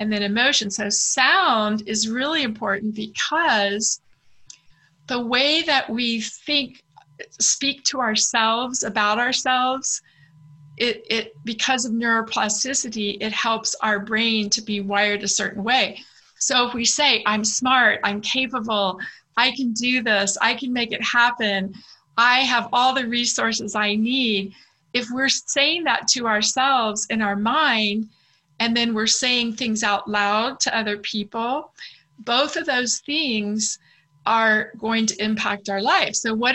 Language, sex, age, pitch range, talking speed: English, female, 40-59, 215-260 Hz, 145 wpm